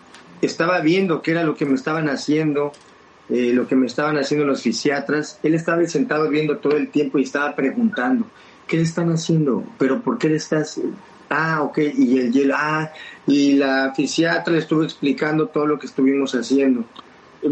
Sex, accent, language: male, Mexican, Spanish